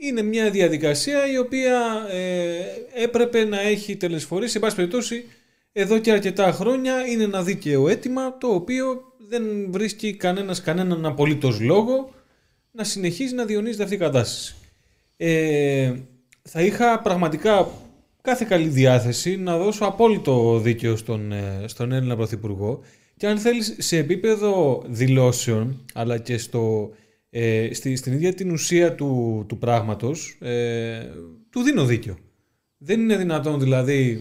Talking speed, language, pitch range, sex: 135 wpm, Greek, 120-190 Hz, male